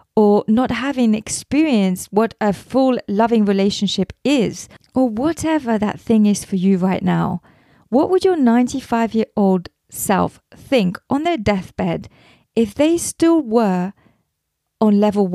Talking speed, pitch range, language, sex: 135 wpm, 195-255 Hz, English, female